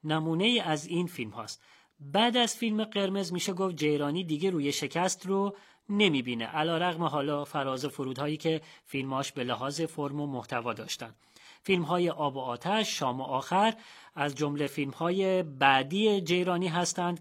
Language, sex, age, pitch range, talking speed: Persian, male, 30-49, 140-185 Hz, 160 wpm